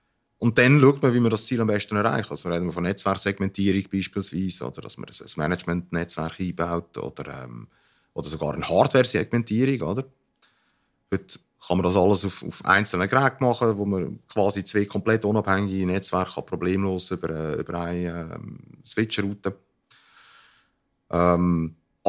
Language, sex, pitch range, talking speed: German, male, 90-120 Hz, 145 wpm